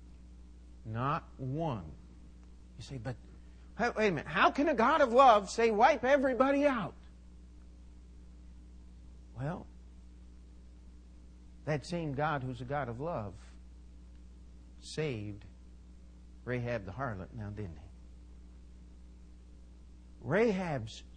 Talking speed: 100 wpm